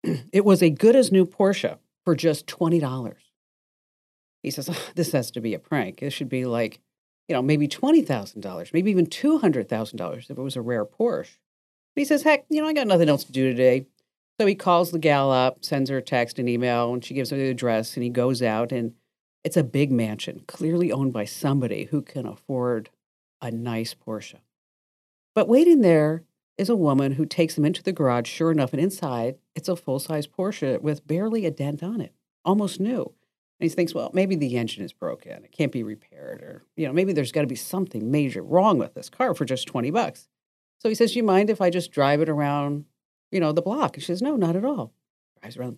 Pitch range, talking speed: 130-185 Hz, 225 wpm